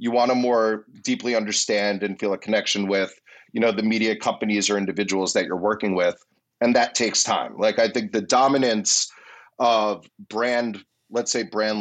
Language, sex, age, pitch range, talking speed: English, male, 30-49, 95-110 Hz, 185 wpm